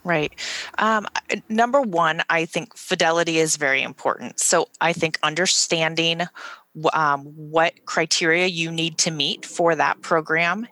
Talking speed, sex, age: 140 wpm, female, 30-49